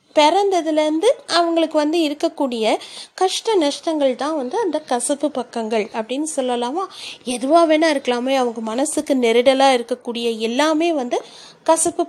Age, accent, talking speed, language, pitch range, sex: 30-49, native, 115 wpm, Tamil, 250-330 Hz, female